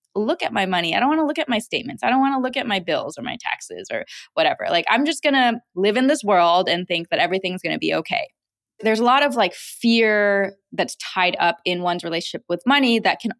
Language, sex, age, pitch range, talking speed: English, female, 20-39, 175-220 Hz, 260 wpm